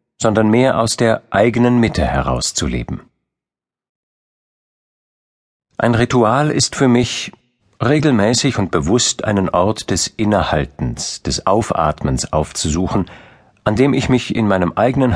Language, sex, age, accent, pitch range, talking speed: German, male, 50-69, German, 80-120 Hz, 115 wpm